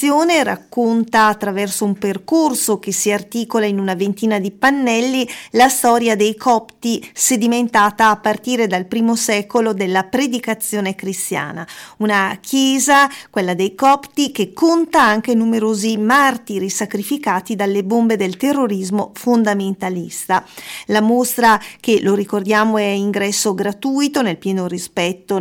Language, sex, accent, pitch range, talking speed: Italian, female, native, 200-250 Hz, 125 wpm